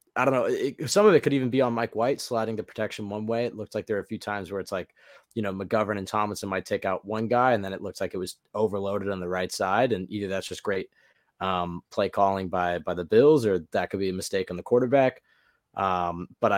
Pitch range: 95-120 Hz